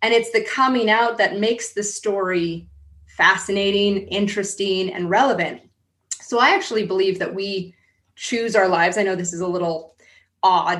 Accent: American